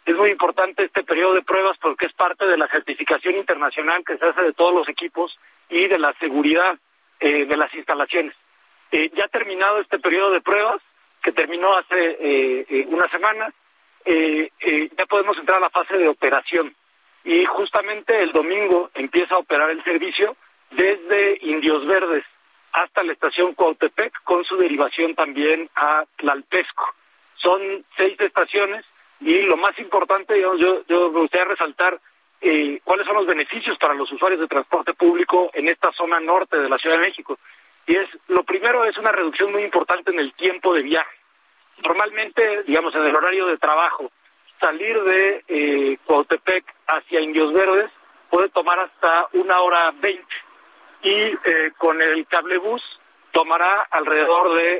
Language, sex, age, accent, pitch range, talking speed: Spanish, male, 40-59, Mexican, 160-195 Hz, 165 wpm